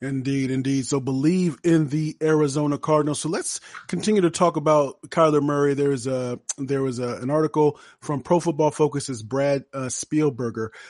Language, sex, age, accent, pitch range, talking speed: English, male, 30-49, American, 125-155 Hz, 165 wpm